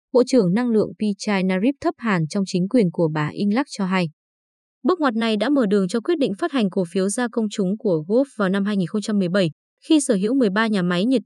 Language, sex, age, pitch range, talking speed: Vietnamese, female, 20-39, 190-250 Hz, 230 wpm